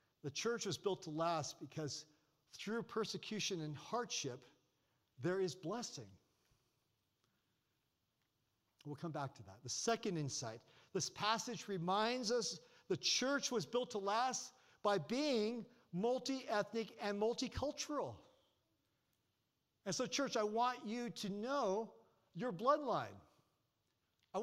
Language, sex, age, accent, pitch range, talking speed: English, male, 50-69, American, 170-235 Hz, 120 wpm